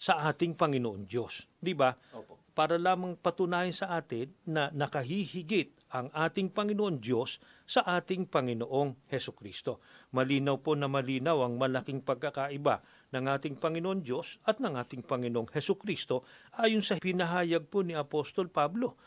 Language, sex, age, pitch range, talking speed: Filipino, male, 50-69, 130-190 Hz, 140 wpm